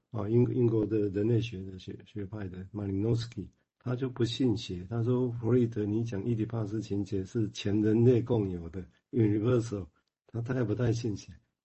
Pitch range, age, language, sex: 100-120 Hz, 50-69, Chinese, male